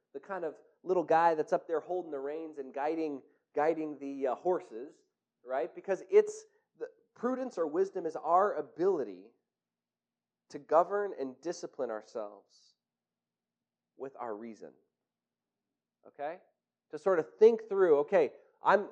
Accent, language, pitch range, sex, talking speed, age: American, English, 175-260 Hz, male, 135 wpm, 30-49